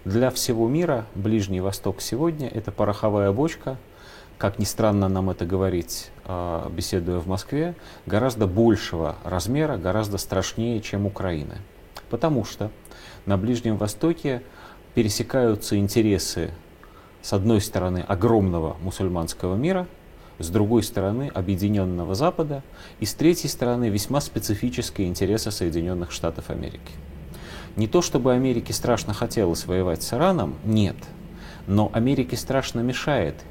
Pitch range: 90-115 Hz